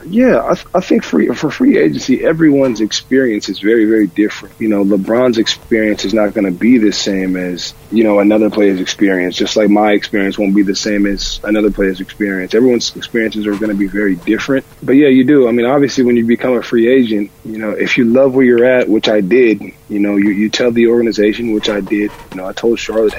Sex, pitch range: male, 100-115 Hz